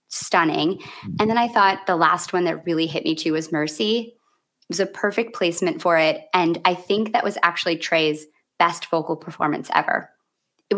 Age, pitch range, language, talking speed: 20-39, 165-220 Hz, English, 190 wpm